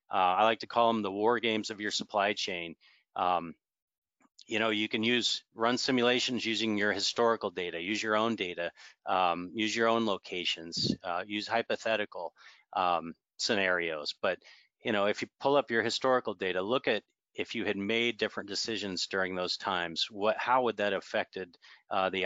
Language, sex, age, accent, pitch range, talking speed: English, male, 40-59, American, 100-115 Hz, 185 wpm